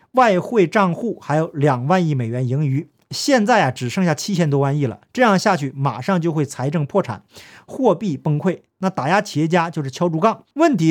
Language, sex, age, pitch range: Chinese, male, 50-69, 145-200 Hz